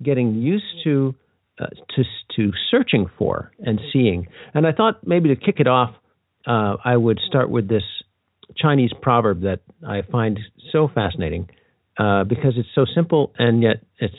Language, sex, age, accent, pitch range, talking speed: English, male, 50-69, American, 100-135 Hz, 165 wpm